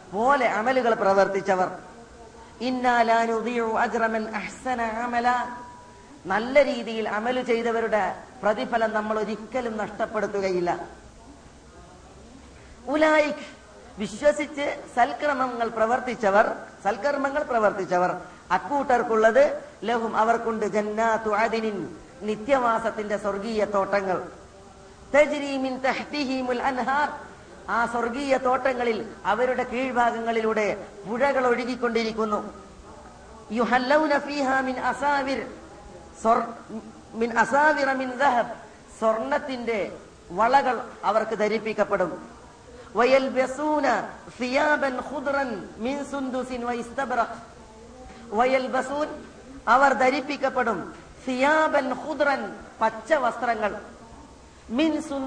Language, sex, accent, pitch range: Malayalam, female, native, 220-270 Hz